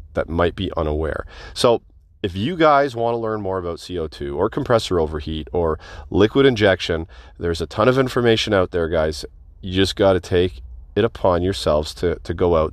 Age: 30-49